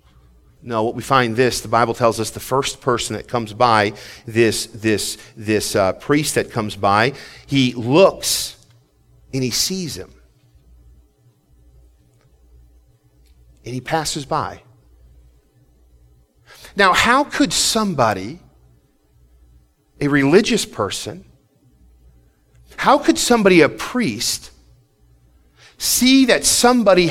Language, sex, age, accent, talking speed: English, male, 40-59, American, 105 wpm